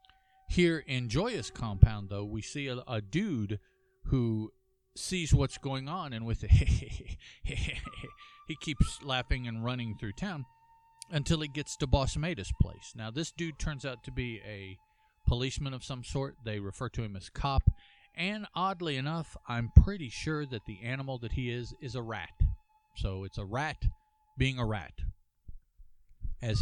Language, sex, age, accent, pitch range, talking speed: English, male, 50-69, American, 110-180 Hz, 165 wpm